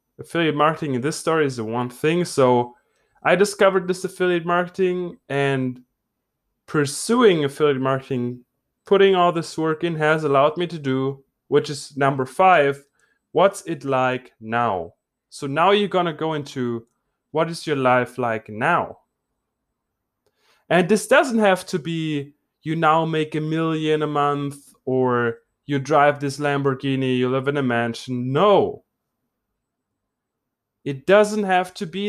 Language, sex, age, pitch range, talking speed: English, male, 20-39, 135-185 Hz, 145 wpm